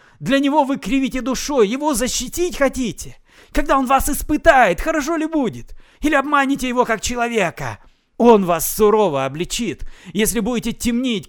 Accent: native